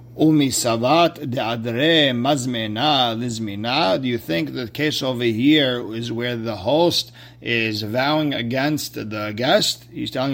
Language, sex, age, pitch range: English, male, 50-69, 120-150 Hz